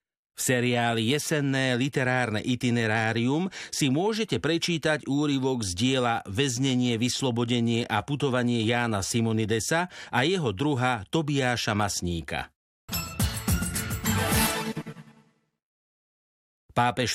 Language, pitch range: Slovak, 110-140 Hz